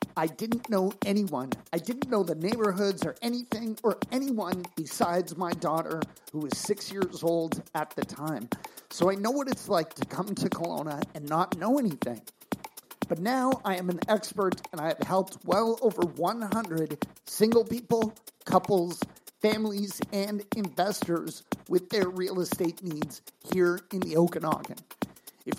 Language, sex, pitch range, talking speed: English, male, 180-220 Hz, 155 wpm